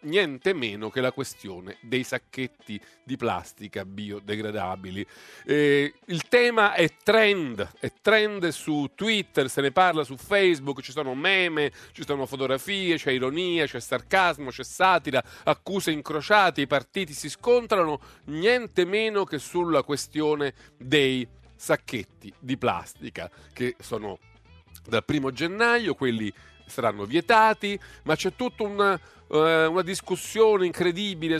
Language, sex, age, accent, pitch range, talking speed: Italian, male, 40-59, native, 135-190 Hz, 125 wpm